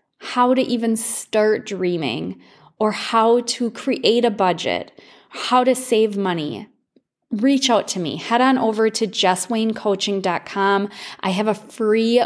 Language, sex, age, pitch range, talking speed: English, female, 20-39, 185-225 Hz, 135 wpm